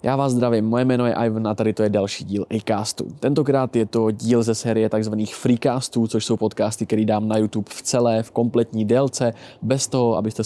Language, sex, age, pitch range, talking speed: Czech, male, 20-39, 110-125 Hz, 210 wpm